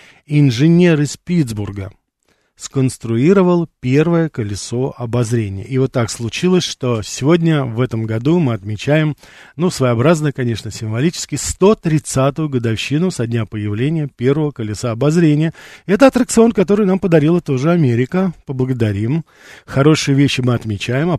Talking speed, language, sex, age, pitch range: 120 wpm, Russian, male, 40-59, 120-165 Hz